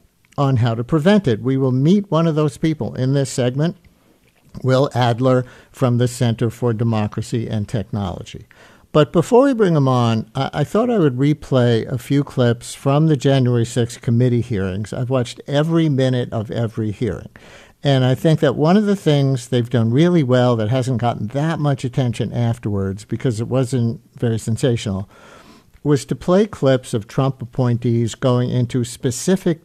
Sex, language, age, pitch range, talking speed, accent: male, English, 50-69, 115-140 Hz, 175 wpm, American